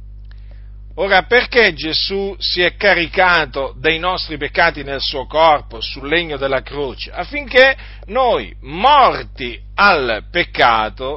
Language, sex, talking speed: Italian, male, 115 wpm